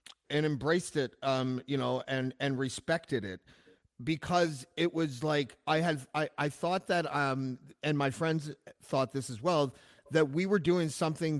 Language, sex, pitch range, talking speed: English, male, 130-165 Hz, 175 wpm